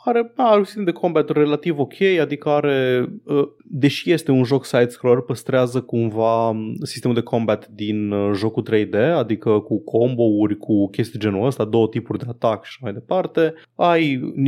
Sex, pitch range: male, 105-135 Hz